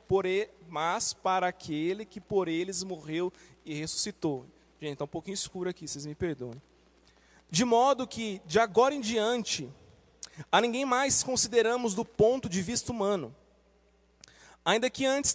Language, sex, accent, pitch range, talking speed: Portuguese, male, Brazilian, 195-245 Hz, 155 wpm